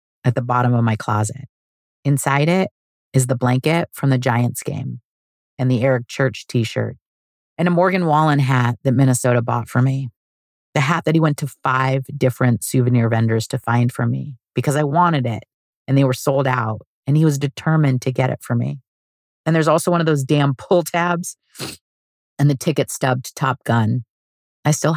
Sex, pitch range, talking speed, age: female, 120-155 Hz, 190 wpm, 40-59